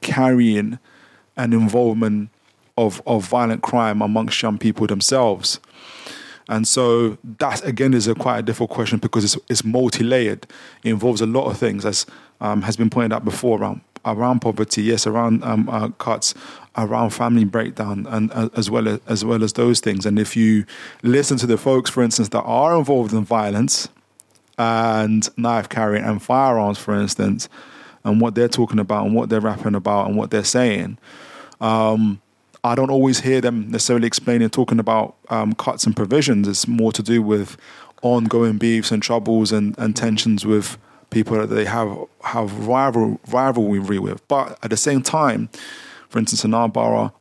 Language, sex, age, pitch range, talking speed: English, male, 20-39, 110-120 Hz, 180 wpm